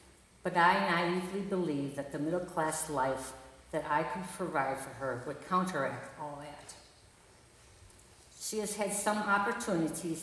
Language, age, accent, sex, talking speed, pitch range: English, 50-69, American, female, 140 wpm, 135-180 Hz